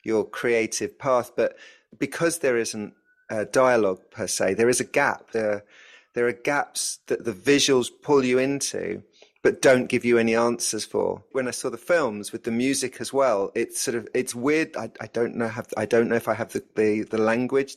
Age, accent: 30-49, British